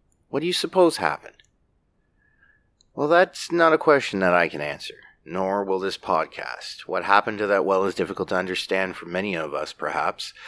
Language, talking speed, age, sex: English, 185 wpm, 30-49, male